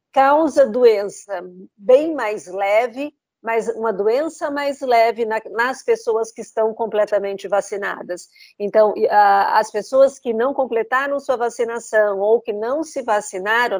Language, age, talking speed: Portuguese, 50-69, 125 wpm